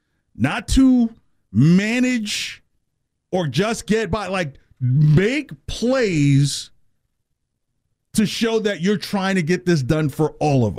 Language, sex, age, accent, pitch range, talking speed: English, male, 50-69, American, 115-185 Hz, 120 wpm